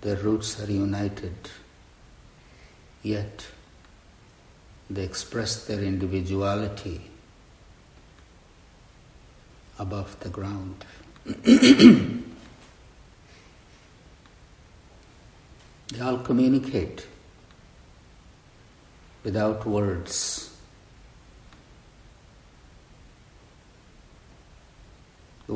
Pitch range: 90-110 Hz